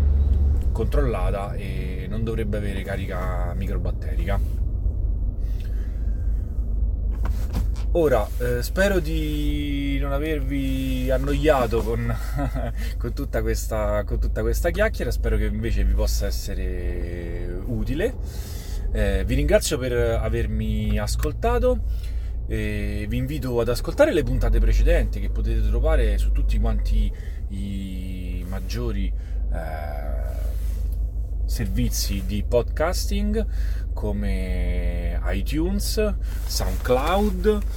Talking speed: 90 wpm